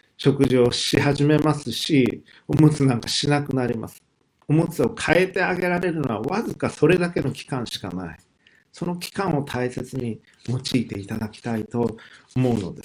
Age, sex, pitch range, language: 50-69, male, 115-150 Hz, Japanese